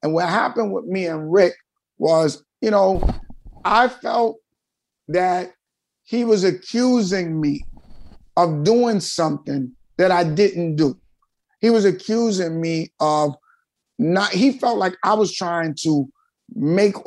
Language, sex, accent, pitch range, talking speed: English, male, American, 160-220 Hz, 135 wpm